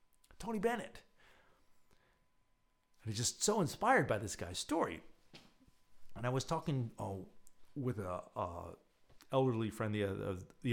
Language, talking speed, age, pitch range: English, 135 wpm, 40-59, 100-140 Hz